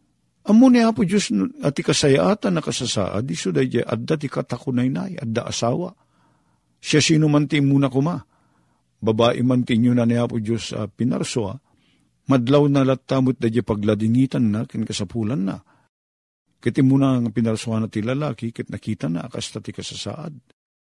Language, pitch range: Filipino, 105-140 Hz